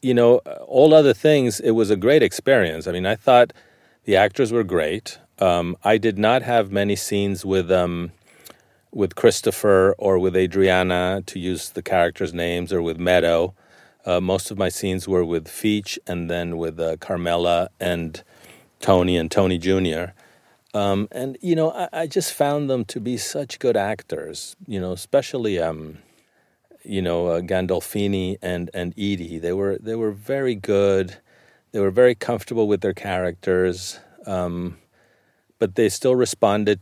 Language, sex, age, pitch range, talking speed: English, male, 40-59, 90-105 Hz, 165 wpm